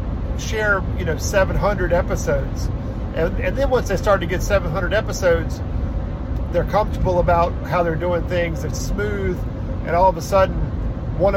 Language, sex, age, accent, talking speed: English, male, 40-59, American, 160 wpm